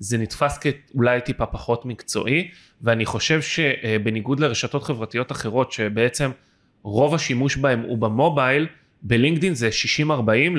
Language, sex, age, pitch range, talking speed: Hebrew, male, 30-49, 115-155 Hz, 120 wpm